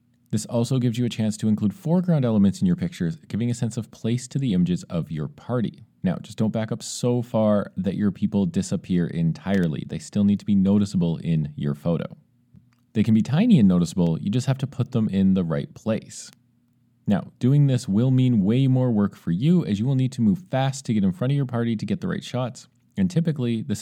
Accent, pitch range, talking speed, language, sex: American, 105-150 Hz, 235 wpm, English, male